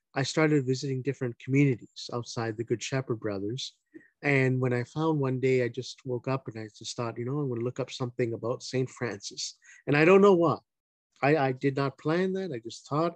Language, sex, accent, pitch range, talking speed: English, male, American, 120-155 Hz, 225 wpm